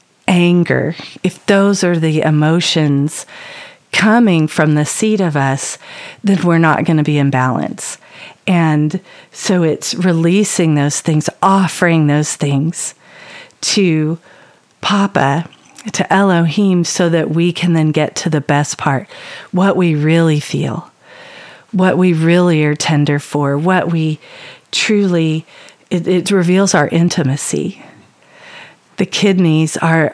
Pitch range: 155-185 Hz